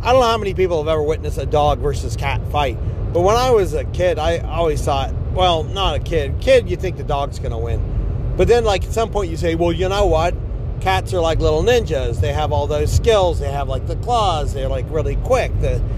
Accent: American